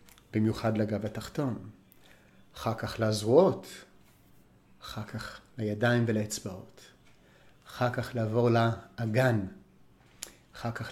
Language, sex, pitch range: Hebrew, male, 110-145 Hz